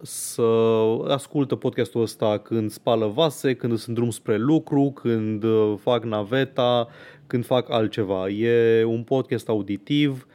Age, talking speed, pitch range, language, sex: 30-49, 130 wpm, 115-165 Hz, Romanian, male